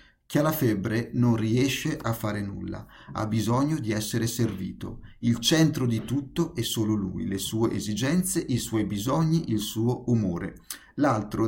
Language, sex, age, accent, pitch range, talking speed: Italian, male, 50-69, native, 105-130 Hz, 160 wpm